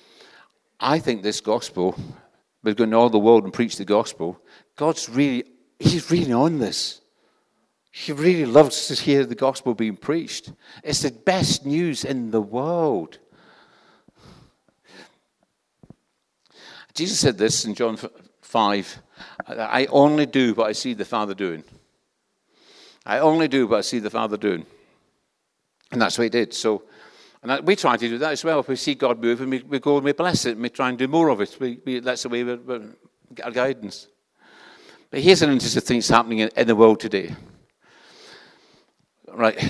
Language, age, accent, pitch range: English, 60-79, British, 115-150 Hz